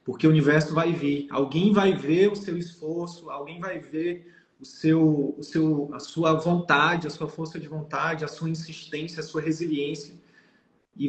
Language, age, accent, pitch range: Portuguese, 20-39, Brazilian, 145-175 Hz